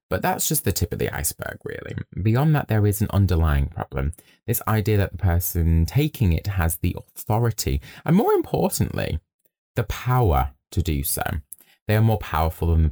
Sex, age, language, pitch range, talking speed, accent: male, 20-39, English, 80-110 Hz, 185 wpm, British